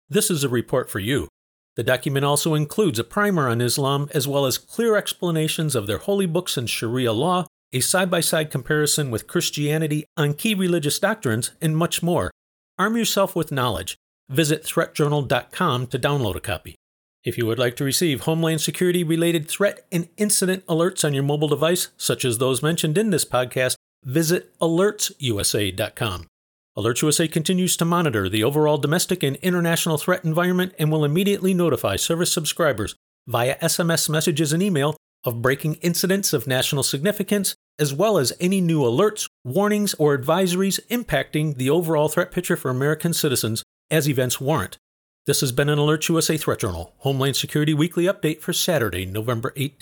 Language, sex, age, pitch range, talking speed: English, male, 40-59, 130-175 Hz, 165 wpm